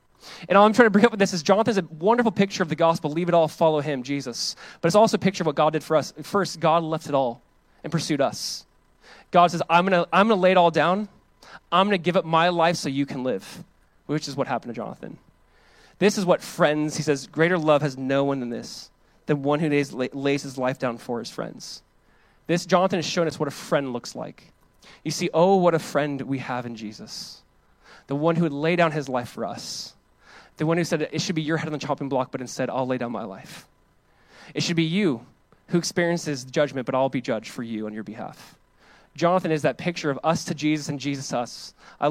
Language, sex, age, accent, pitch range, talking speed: English, male, 20-39, American, 135-170 Hz, 240 wpm